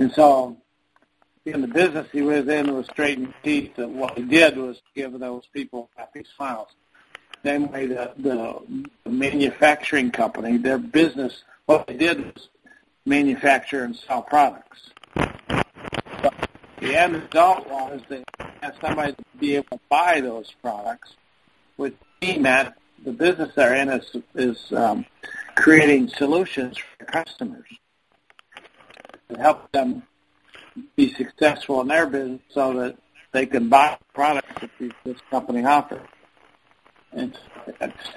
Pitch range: 130-160 Hz